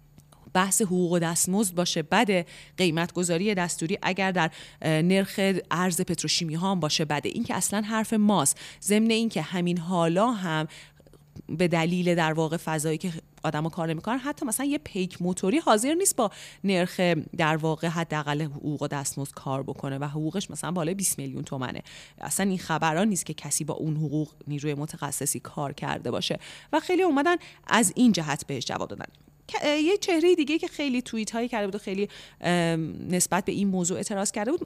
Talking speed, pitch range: 175 wpm, 160-225 Hz